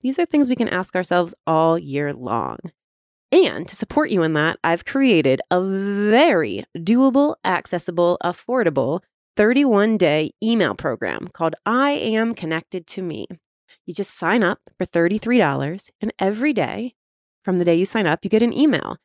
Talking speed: 165 wpm